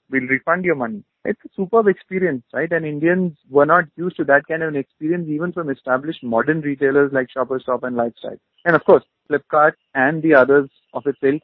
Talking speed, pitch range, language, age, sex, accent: 205 wpm, 120-145 Hz, English, 30-49, male, Indian